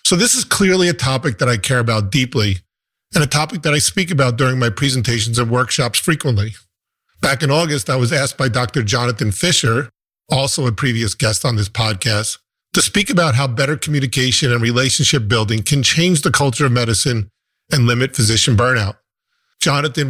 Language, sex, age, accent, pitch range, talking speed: English, male, 40-59, American, 115-145 Hz, 180 wpm